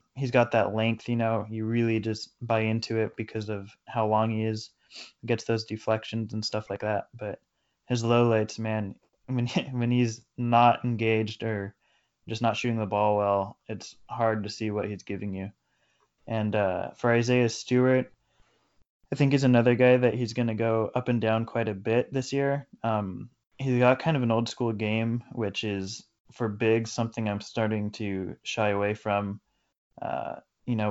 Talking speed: 190 wpm